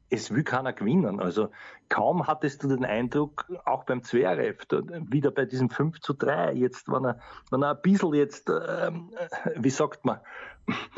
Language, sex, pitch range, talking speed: German, male, 130-150 Hz, 170 wpm